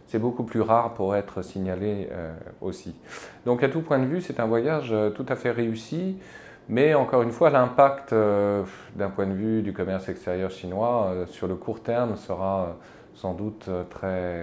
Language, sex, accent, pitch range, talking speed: French, male, French, 90-110 Hz, 185 wpm